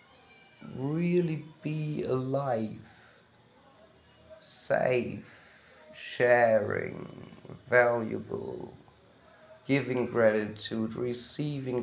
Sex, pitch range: male, 115-140 Hz